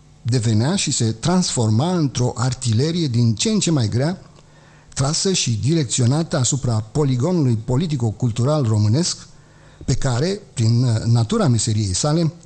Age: 50-69